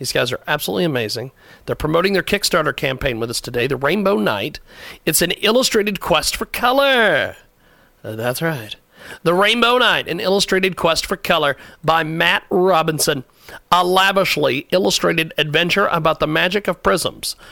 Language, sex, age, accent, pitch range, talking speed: English, male, 40-59, American, 150-195 Hz, 155 wpm